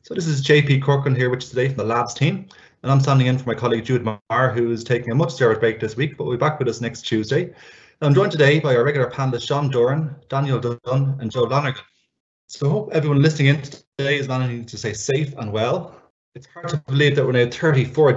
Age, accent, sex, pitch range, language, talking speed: 20-39, Irish, male, 120-140 Hz, English, 250 wpm